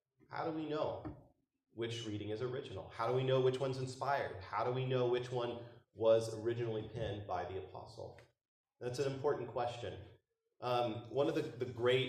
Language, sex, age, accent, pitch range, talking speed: English, male, 30-49, American, 110-130 Hz, 185 wpm